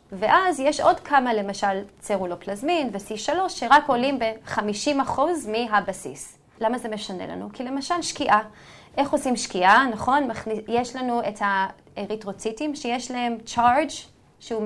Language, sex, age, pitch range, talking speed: Hebrew, female, 30-49, 205-270 Hz, 125 wpm